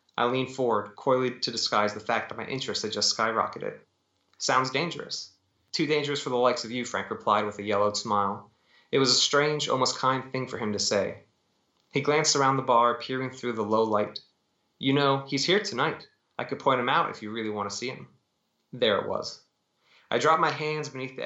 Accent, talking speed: American, 215 wpm